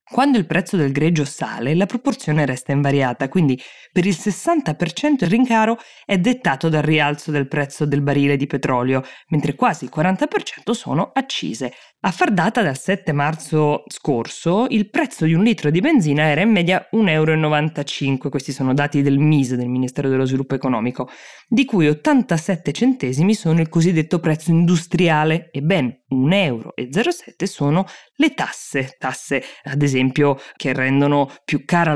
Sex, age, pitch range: female, 20-39, 135-180 Hz